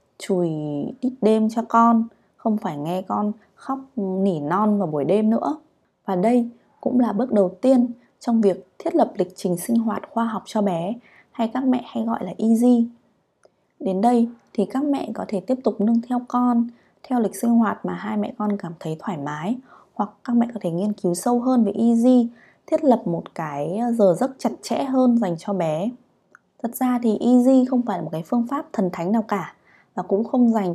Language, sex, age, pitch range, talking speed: Vietnamese, female, 20-39, 190-245 Hz, 210 wpm